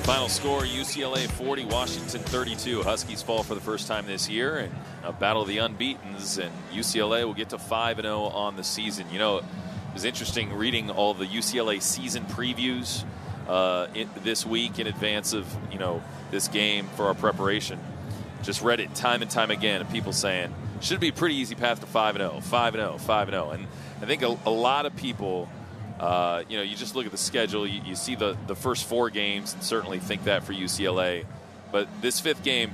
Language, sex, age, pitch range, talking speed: English, male, 30-49, 100-120 Hz, 200 wpm